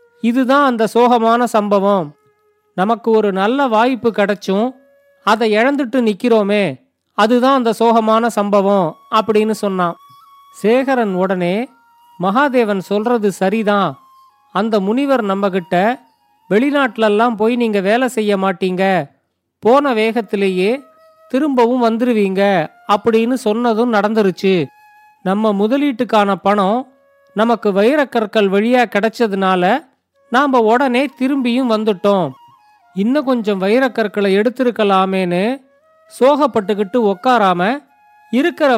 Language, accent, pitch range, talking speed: Tamil, native, 200-255 Hz, 90 wpm